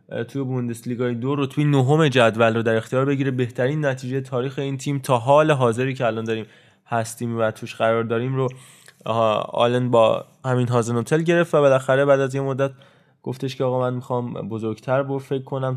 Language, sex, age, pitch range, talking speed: Persian, male, 20-39, 120-140 Hz, 190 wpm